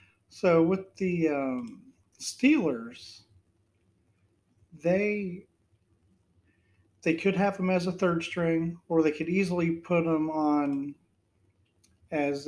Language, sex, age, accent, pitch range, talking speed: English, male, 40-59, American, 110-175 Hz, 105 wpm